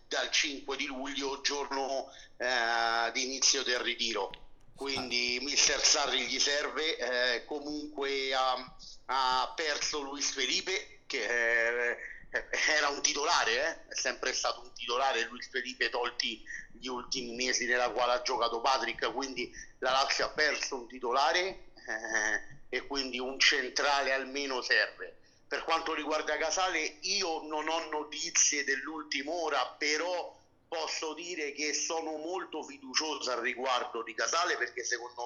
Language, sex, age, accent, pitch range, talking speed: Italian, male, 50-69, native, 125-155 Hz, 140 wpm